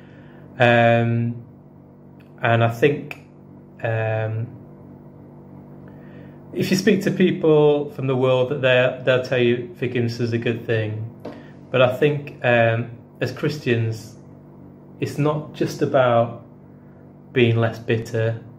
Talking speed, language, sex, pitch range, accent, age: 115 wpm, English, male, 110-130 Hz, British, 20-39